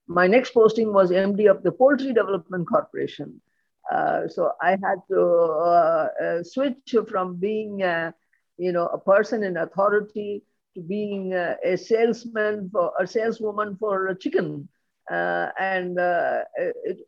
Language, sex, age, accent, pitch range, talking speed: English, female, 50-69, Indian, 185-235 Hz, 150 wpm